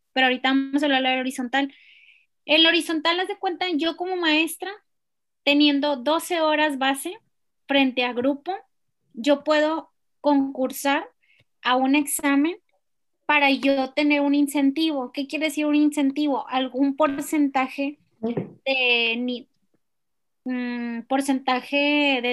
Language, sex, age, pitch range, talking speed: Spanish, female, 20-39, 255-300 Hz, 115 wpm